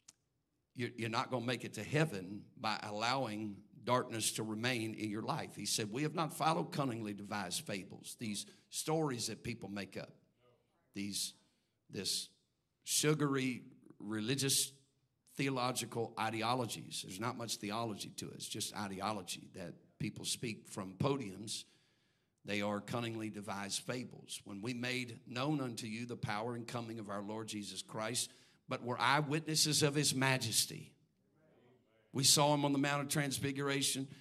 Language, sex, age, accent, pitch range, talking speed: English, male, 50-69, American, 110-135 Hz, 150 wpm